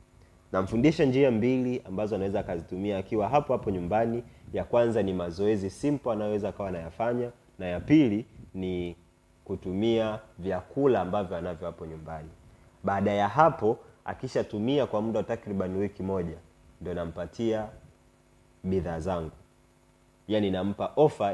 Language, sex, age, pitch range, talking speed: Swahili, male, 30-49, 90-115 Hz, 125 wpm